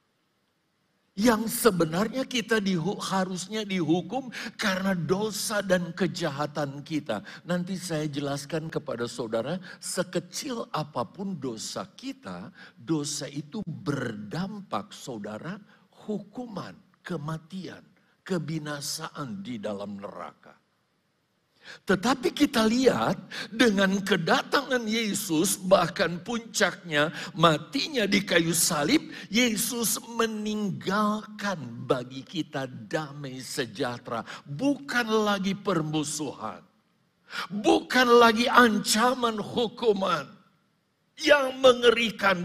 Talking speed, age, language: 80 wpm, 50-69, Indonesian